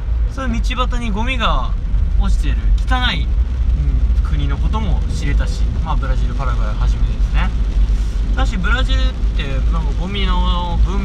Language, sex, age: Japanese, male, 20-39